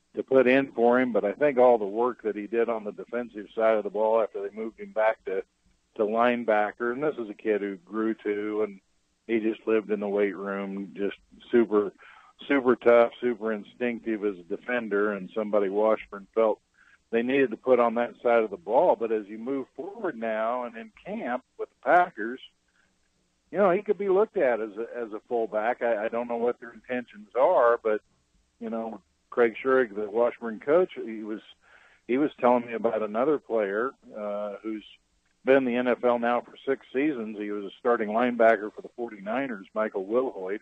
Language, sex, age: English, male, 50-69